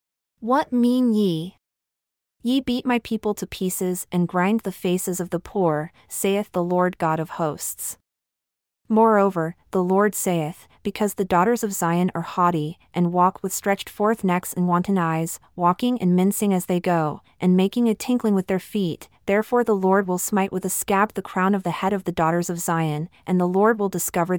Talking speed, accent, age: 190 wpm, American, 30-49